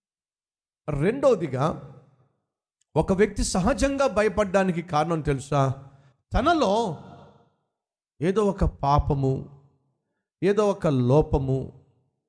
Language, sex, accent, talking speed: Telugu, male, native, 70 wpm